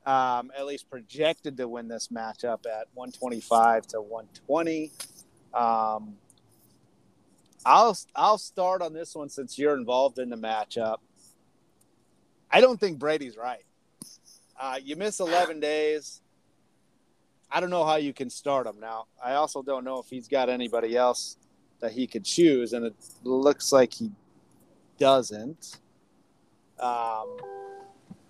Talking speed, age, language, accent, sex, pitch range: 140 wpm, 30-49, English, American, male, 120-155 Hz